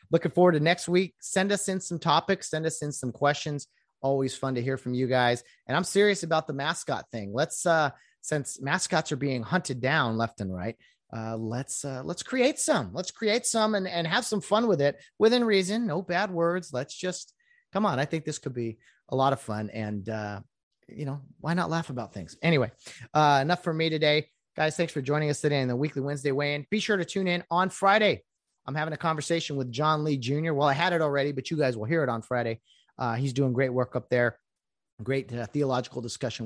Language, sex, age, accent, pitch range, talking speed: English, male, 30-49, American, 120-165 Hz, 230 wpm